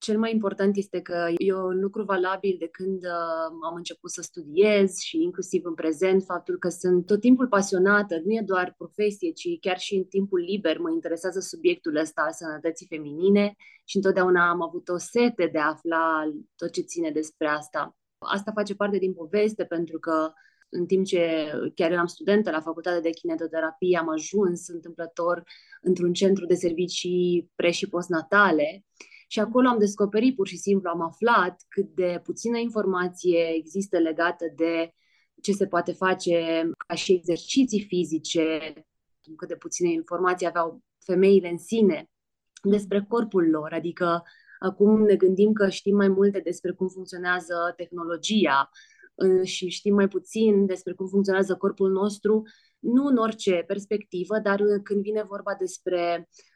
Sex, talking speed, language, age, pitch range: female, 155 wpm, Romanian, 20-39, 170-200 Hz